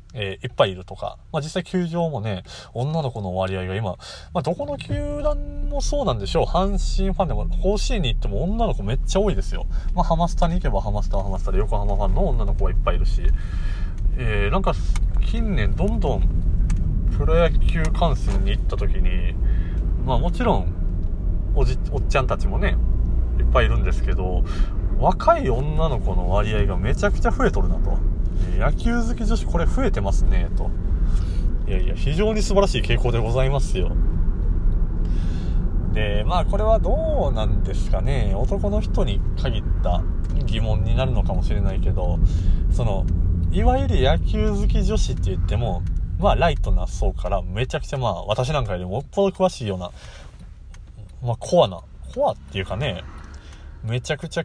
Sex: male